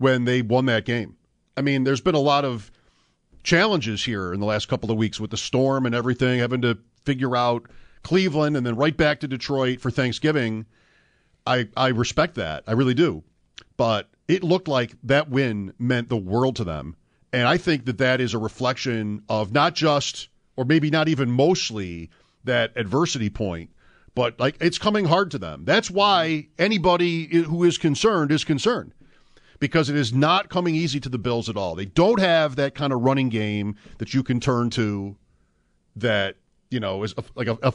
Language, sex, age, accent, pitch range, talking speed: English, male, 40-59, American, 110-145 Hz, 190 wpm